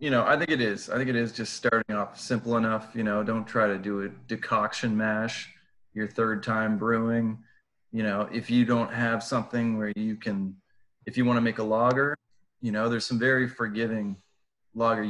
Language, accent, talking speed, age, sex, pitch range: English, American, 205 wpm, 30-49, male, 105-120 Hz